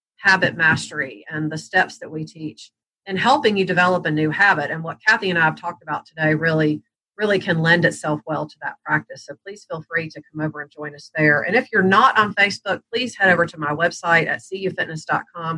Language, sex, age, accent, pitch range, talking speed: English, female, 40-59, American, 155-190 Hz, 225 wpm